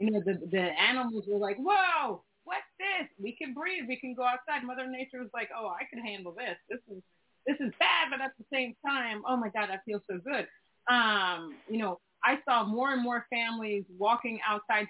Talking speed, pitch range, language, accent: 220 wpm, 195-240 Hz, English, American